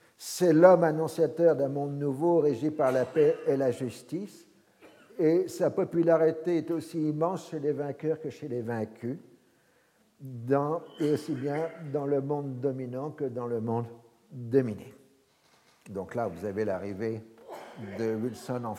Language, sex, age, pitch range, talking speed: French, male, 60-79, 120-160 Hz, 150 wpm